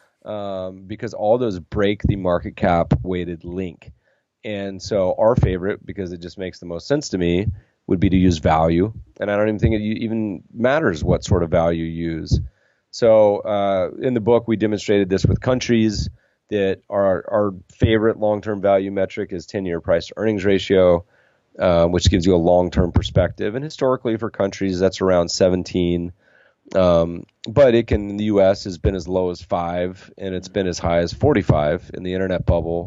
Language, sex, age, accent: English, male, 30-49, American